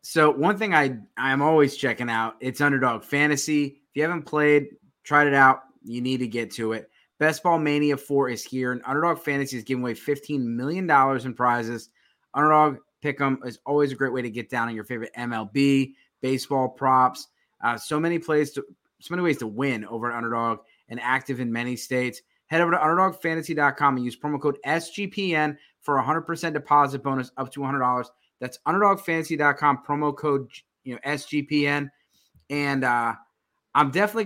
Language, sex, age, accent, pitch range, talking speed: English, male, 20-39, American, 130-155 Hz, 185 wpm